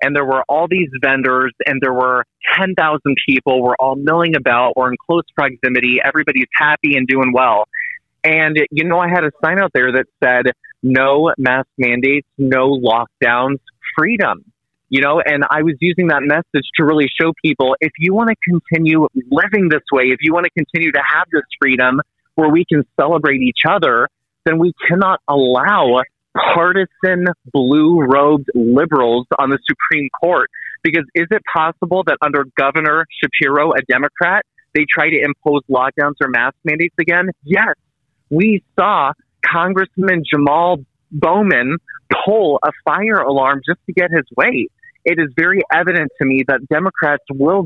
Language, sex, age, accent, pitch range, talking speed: English, male, 20-39, American, 135-170 Hz, 165 wpm